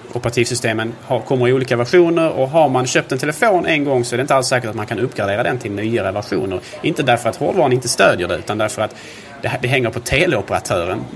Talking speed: 220 wpm